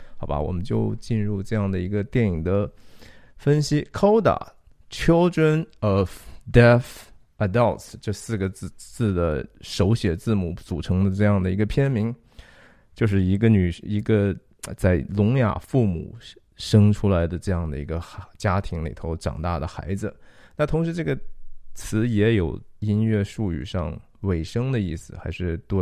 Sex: male